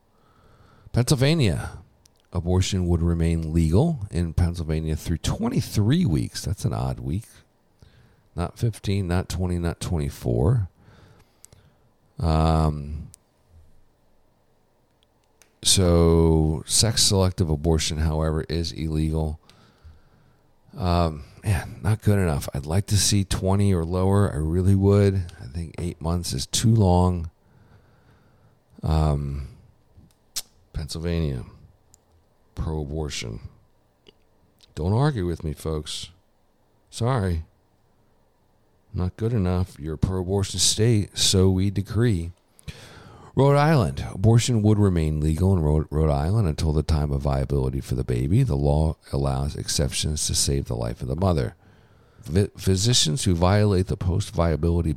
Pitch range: 80-105 Hz